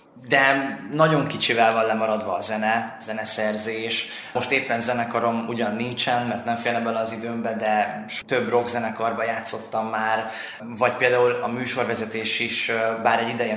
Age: 20-39